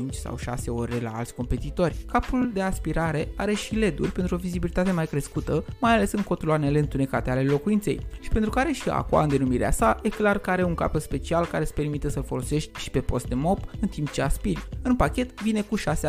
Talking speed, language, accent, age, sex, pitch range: 215 wpm, Romanian, native, 20-39, male, 145-205 Hz